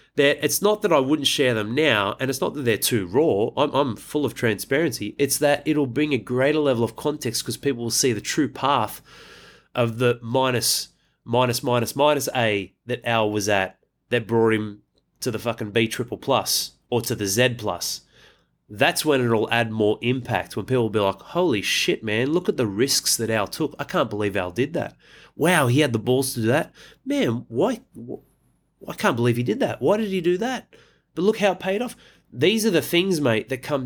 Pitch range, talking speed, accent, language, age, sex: 110-145 Hz, 220 wpm, Australian, English, 30-49, male